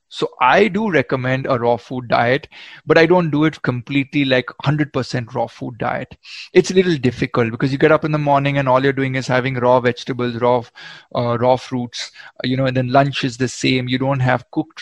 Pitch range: 125-145 Hz